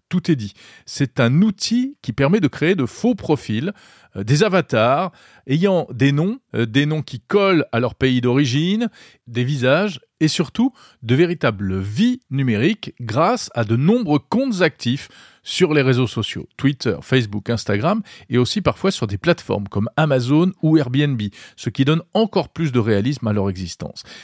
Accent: French